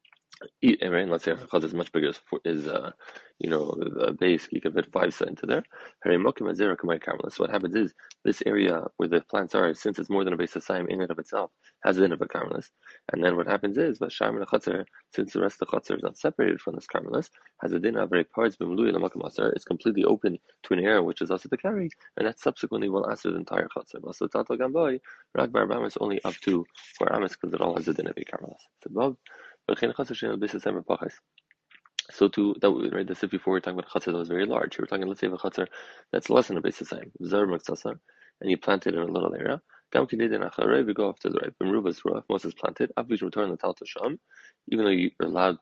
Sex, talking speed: male, 210 wpm